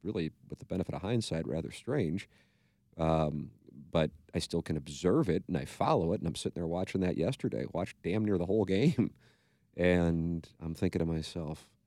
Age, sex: 40-59, male